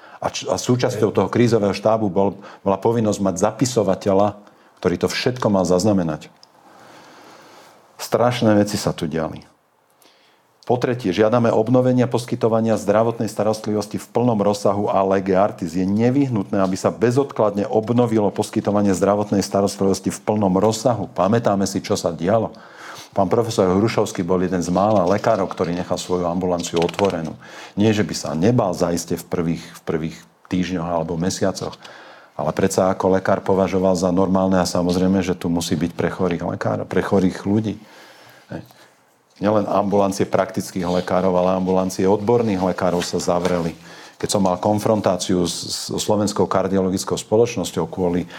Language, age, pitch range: Slovak, 50-69, 90-105 Hz